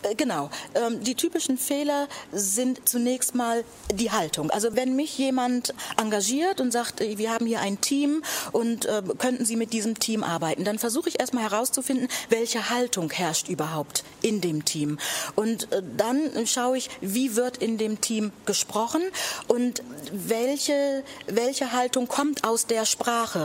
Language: German